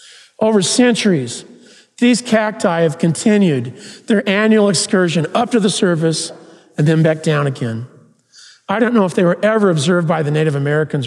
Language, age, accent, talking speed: English, 40-59, American, 165 wpm